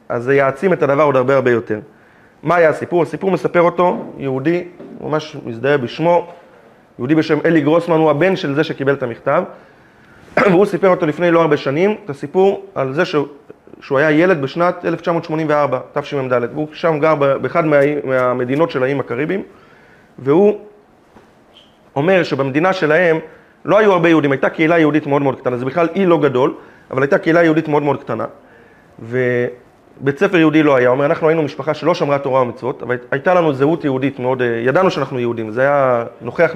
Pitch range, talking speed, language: 130-170 Hz, 180 wpm, Hebrew